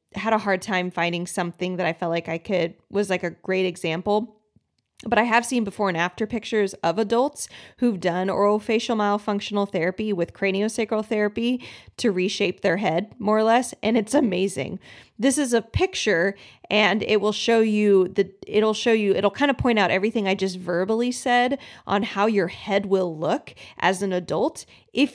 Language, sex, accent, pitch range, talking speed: English, female, American, 185-235 Hz, 190 wpm